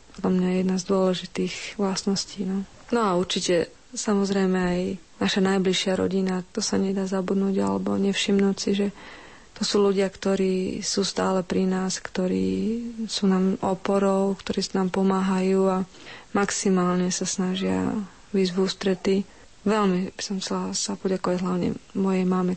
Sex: female